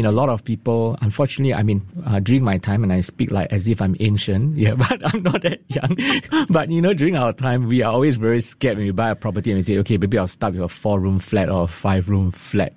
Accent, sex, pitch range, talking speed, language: Malaysian, male, 105-130 Hz, 275 wpm, English